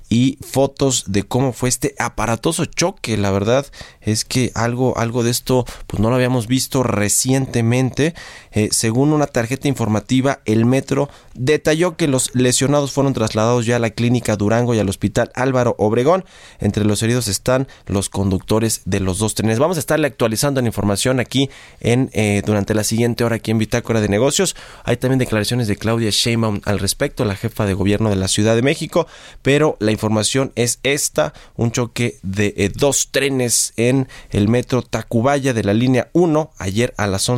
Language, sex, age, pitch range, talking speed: Spanish, male, 20-39, 105-135 Hz, 180 wpm